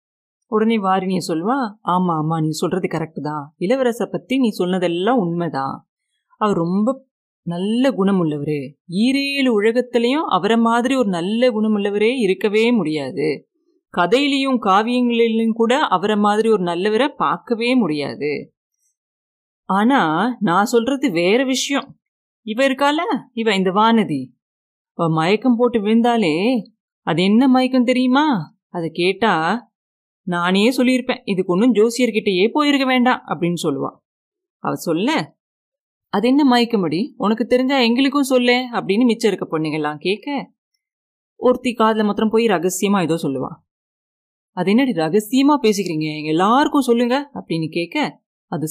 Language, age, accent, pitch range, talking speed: Tamil, 30-49, native, 180-255 Hz, 115 wpm